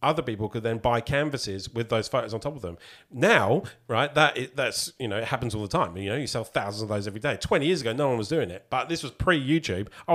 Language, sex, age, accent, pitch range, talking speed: English, male, 40-59, British, 105-140 Hz, 285 wpm